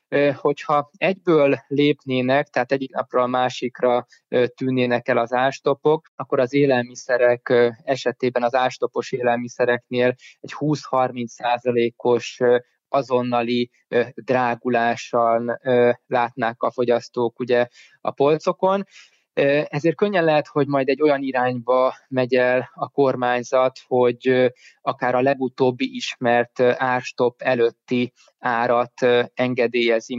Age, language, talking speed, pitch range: 20-39, Hungarian, 100 wpm, 120-135 Hz